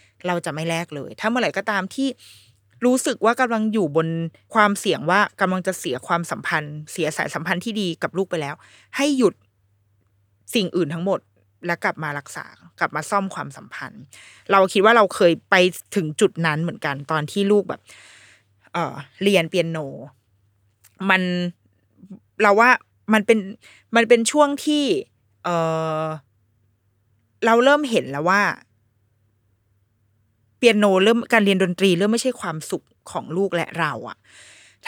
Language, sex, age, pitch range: Thai, female, 20-39, 150-230 Hz